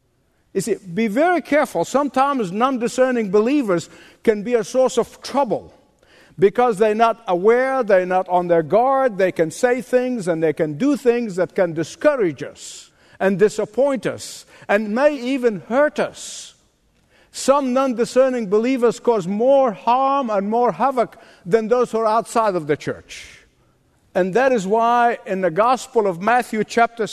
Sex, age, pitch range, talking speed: male, 50-69, 200-270 Hz, 155 wpm